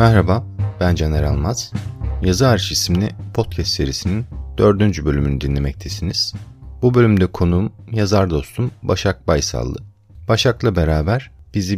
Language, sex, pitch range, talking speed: Turkish, male, 80-110 Hz, 110 wpm